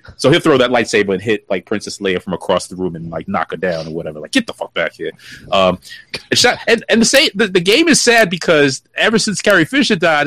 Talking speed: 265 wpm